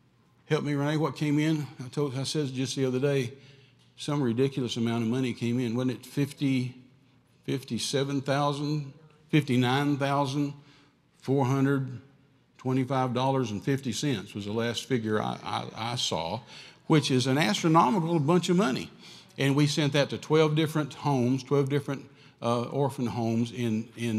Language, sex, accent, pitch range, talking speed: English, male, American, 115-140 Hz, 145 wpm